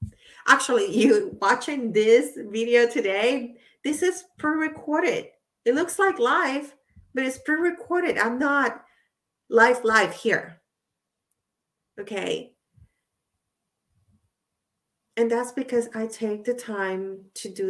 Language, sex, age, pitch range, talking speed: English, female, 30-49, 195-270 Hz, 105 wpm